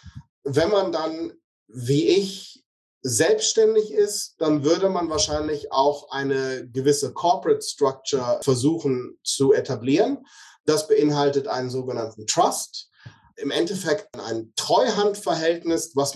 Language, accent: German, German